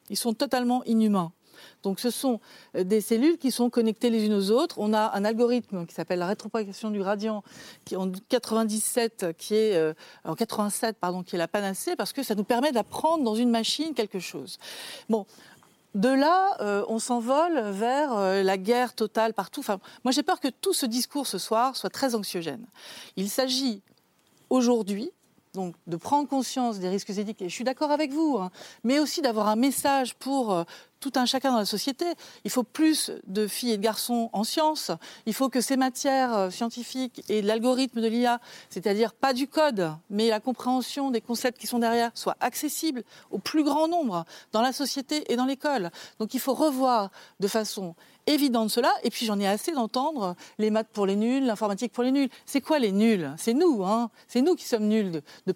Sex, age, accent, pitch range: female, 40-59, French, 205-265 Hz